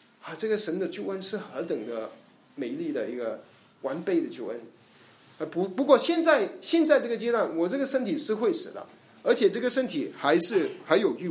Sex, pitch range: male, 215-315 Hz